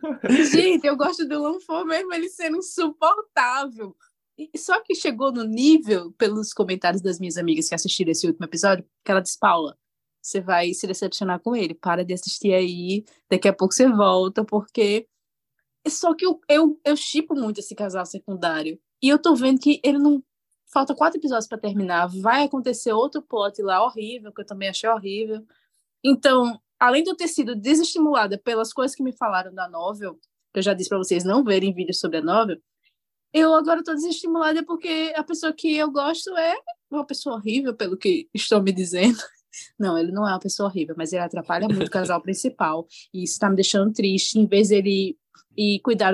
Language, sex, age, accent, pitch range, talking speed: Portuguese, female, 20-39, Brazilian, 195-290 Hz, 190 wpm